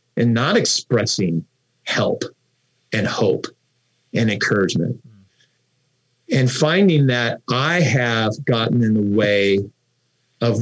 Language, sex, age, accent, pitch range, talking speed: English, male, 40-59, American, 110-130 Hz, 100 wpm